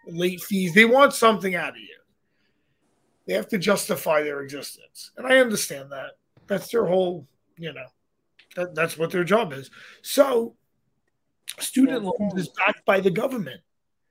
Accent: American